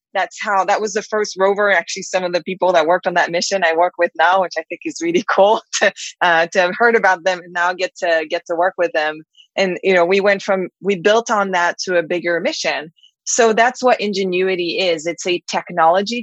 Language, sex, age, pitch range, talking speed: English, female, 20-39, 175-225 Hz, 240 wpm